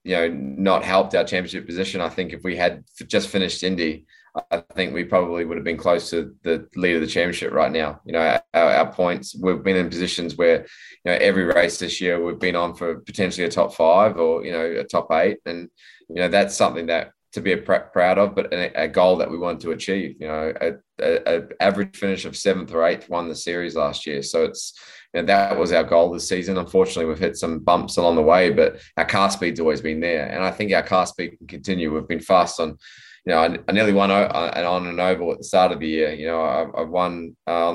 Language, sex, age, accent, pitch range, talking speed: English, male, 20-39, Australian, 85-105 Hz, 240 wpm